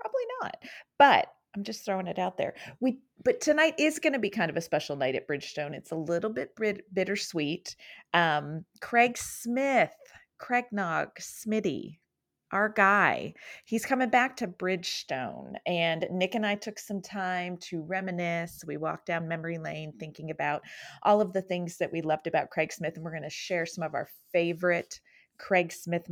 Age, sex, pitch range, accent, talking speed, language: 30-49, female, 165-215 Hz, American, 180 wpm, English